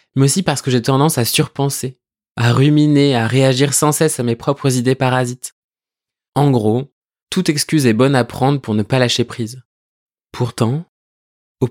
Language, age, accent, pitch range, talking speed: French, 20-39, French, 120-140 Hz, 175 wpm